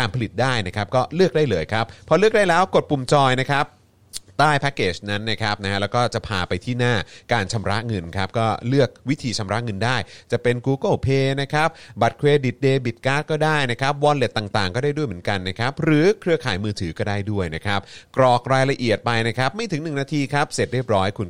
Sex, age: male, 30-49